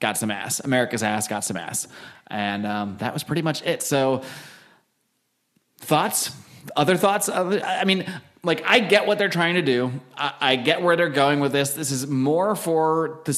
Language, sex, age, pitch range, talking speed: English, male, 30-49, 130-170 Hz, 195 wpm